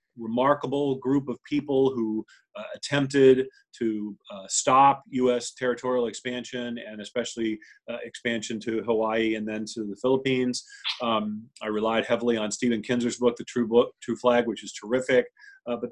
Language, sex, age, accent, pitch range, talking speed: English, male, 40-59, American, 110-130 Hz, 160 wpm